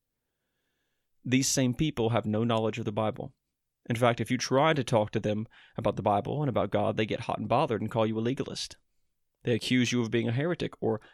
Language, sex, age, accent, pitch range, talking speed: English, male, 30-49, American, 110-130 Hz, 225 wpm